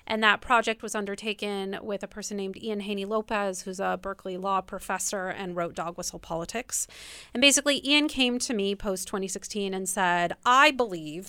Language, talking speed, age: English, 175 wpm, 30-49